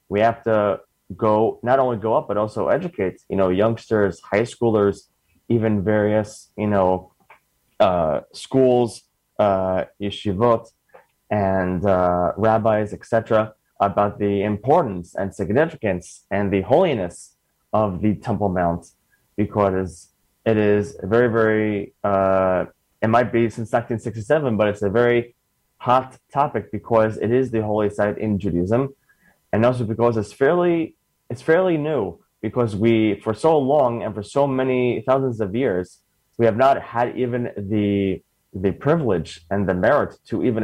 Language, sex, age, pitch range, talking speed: English, male, 20-39, 100-120 Hz, 145 wpm